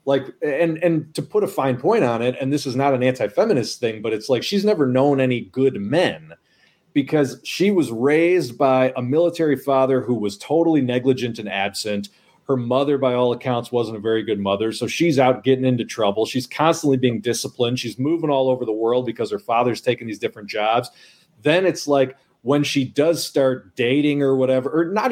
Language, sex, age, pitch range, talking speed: English, male, 30-49, 120-145 Hz, 205 wpm